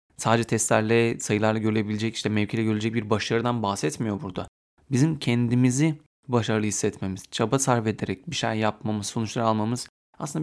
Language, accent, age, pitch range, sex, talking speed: Turkish, native, 30-49, 105-130 Hz, male, 140 wpm